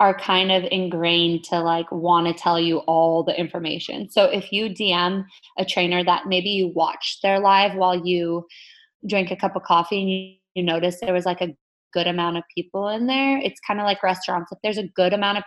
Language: English